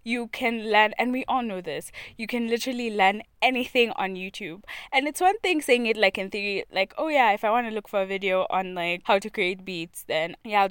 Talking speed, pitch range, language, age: 245 wpm, 190-235 Hz, English, 20-39